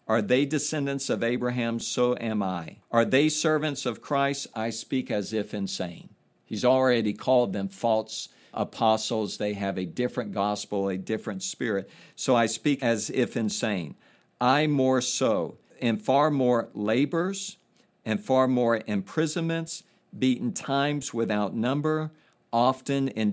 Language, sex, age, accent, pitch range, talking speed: English, male, 60-79, American, 105-135 Hz, 140 wpm